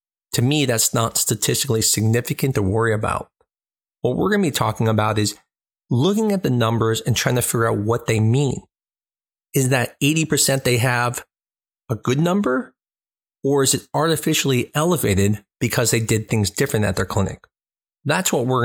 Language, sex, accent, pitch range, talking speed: English, male, American, 105-135 Hz, 170 wpm